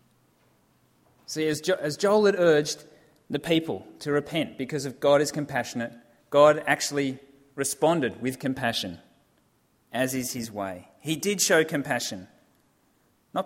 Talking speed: 125 wpm